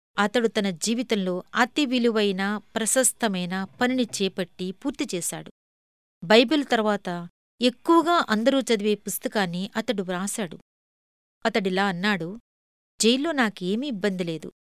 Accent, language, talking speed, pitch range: native, Telugu, 95 wpm, 180-235 Hz